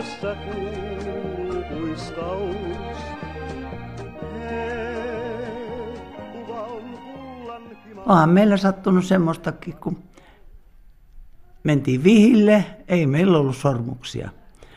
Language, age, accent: Finnish, 60-79, native